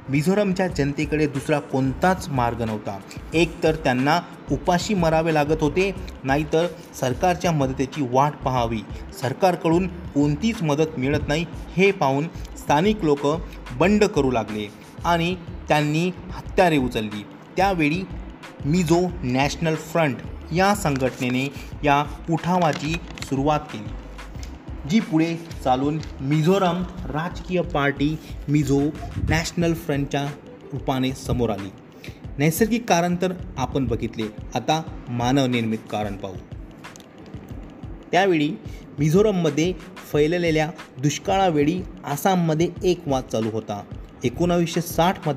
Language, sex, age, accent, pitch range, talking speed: English, male, 30-49, Indian, 135-170 Hz, 110 wpm